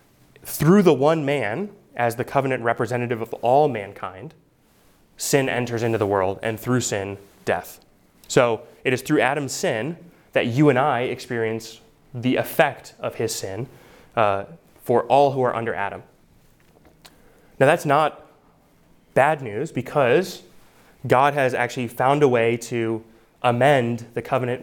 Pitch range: 115-140 Hz